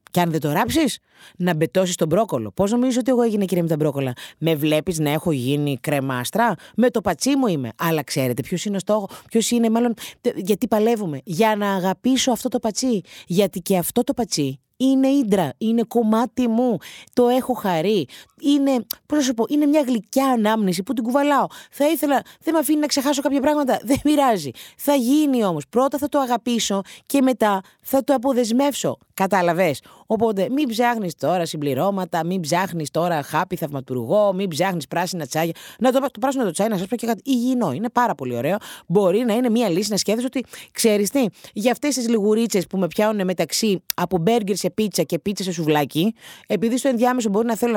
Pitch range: 170-255 Hz